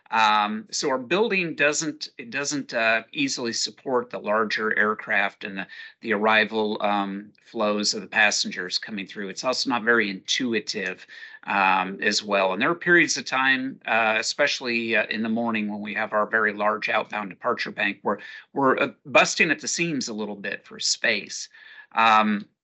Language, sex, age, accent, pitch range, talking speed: English, male, 50-69, American, 105-125 Hz, 175 wpm